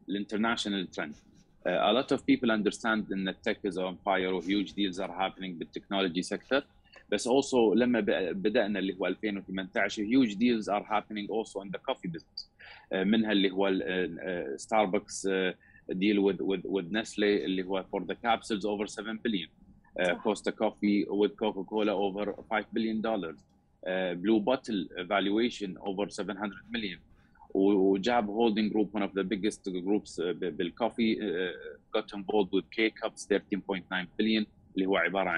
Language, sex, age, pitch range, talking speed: Arabic, male, 30-49, 95-115 Hz, 155 wpm